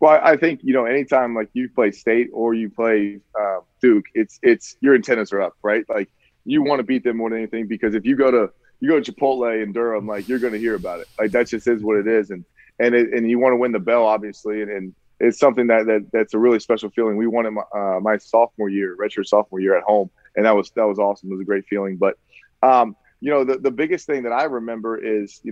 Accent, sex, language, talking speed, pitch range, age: American, male, English, 270 wpm, 105-125 Hz, 20-39